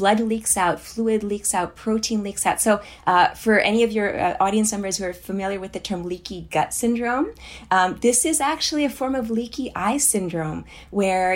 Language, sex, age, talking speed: English, female, 30-49, 200 wpm